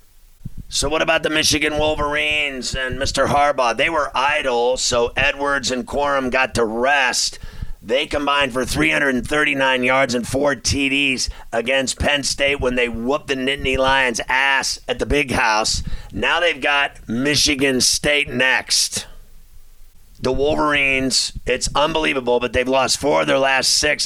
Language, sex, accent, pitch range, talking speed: English, male, American, 125-145 Hz, 145 wpm